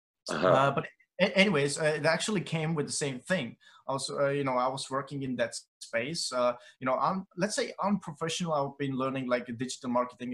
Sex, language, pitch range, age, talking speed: male, Croatian, 115-135 Hz, 20-39, 190 wpm